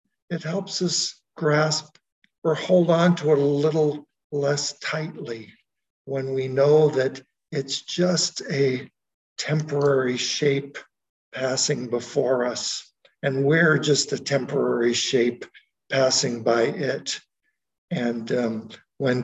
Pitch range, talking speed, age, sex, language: 125-150 Hz, 115 wpm, 60-79, male, English